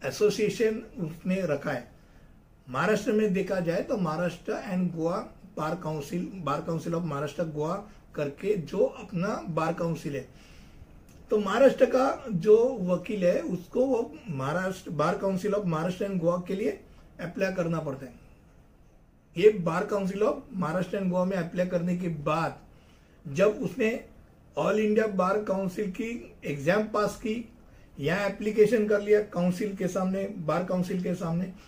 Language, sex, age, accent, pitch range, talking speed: Hindi, male, 50-69, native, 165-210 Hz, 150 wpm